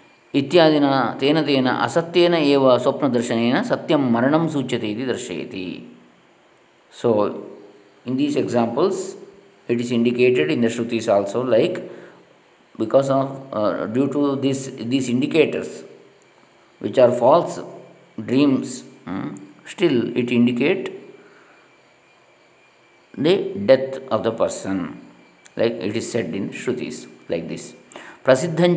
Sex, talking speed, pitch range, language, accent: male, 100 wpm, 110-135 Hz, Kannada, native